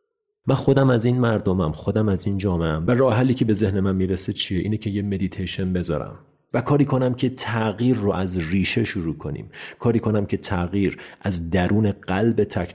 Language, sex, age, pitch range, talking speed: Persian, male, 40-59, 90-110 Hz, 190 wpm